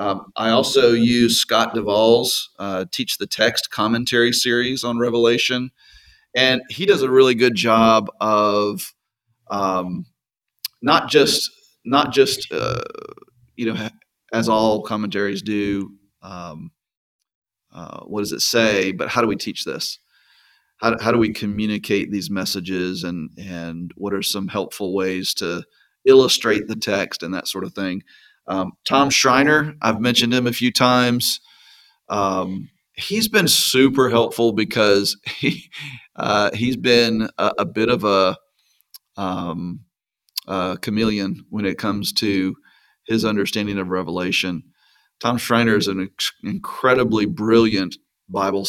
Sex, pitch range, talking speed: male, 95-120 Hz, 140 wpm